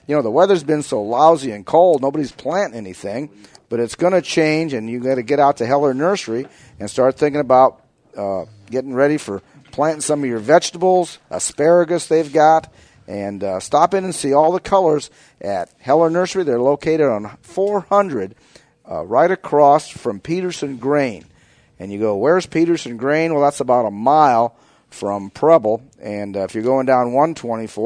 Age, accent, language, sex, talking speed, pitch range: 50-69, American, English, male, 180 wpm, 115-160 Hz